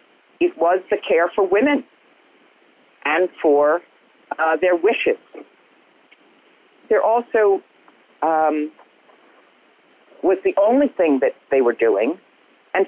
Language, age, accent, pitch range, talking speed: English, 50-69, American, 130-195 Hz, 105 wpm